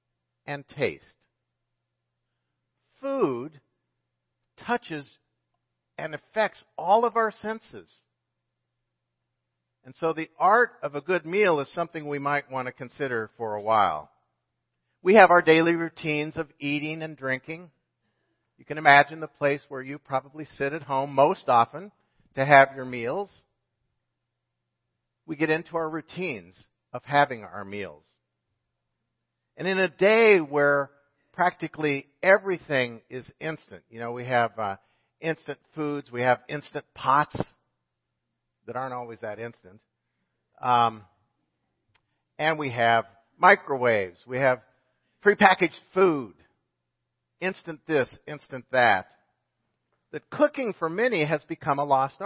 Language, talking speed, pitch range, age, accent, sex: English, 125 wpm, 115-160 Hz, 50-69, American, male